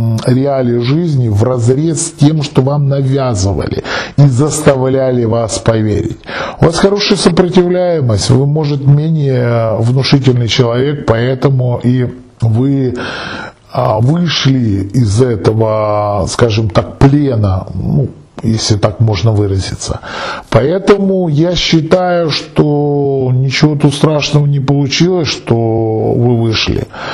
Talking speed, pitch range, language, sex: 105 wpm, 115-145 Hz, Russian, male